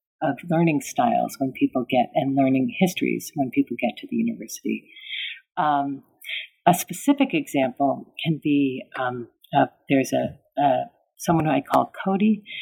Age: 50-69